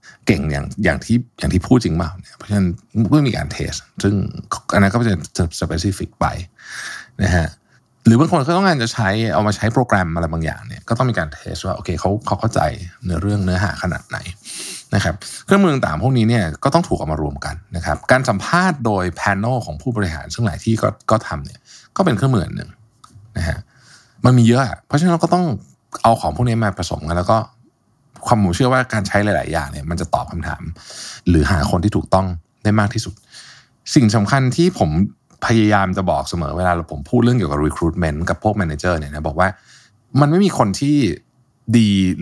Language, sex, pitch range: Thai, male, 90-120 Hz